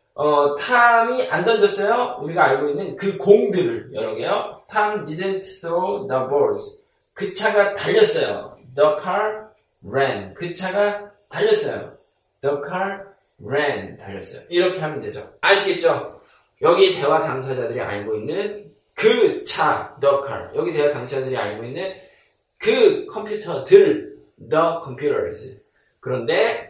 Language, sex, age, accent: Korean, male, 20-39, native